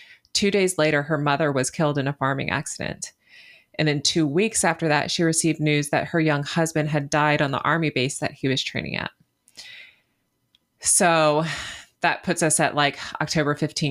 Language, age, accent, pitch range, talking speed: English, 30-49, American, 140-160 Hz, 180 wpm